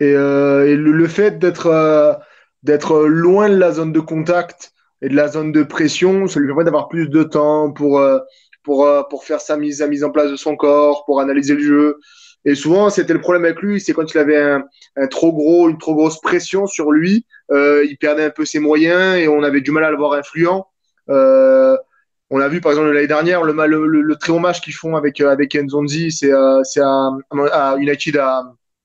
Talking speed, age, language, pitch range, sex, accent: 215 wpm, 20-39, French, 145-175 Hz, male, French